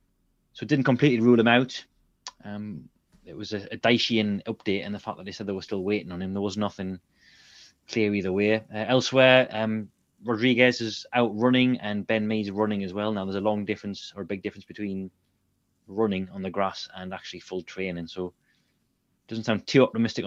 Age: 20-39